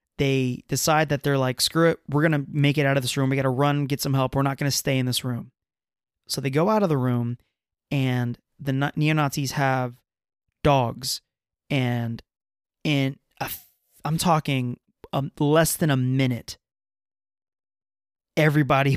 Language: English